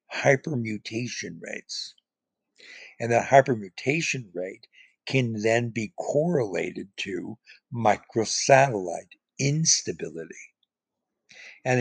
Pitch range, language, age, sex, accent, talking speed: 105-125 Hz, English, 60-79, male, American, 70 wpm